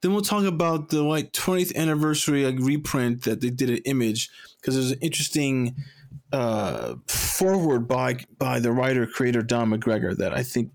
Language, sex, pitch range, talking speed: English, male, 120-160 Hz, 170 wpm